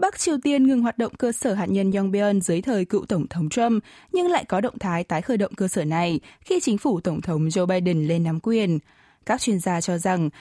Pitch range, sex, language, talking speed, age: 180-255 Hz, female, Vietnamese, 250 wpm, 20-39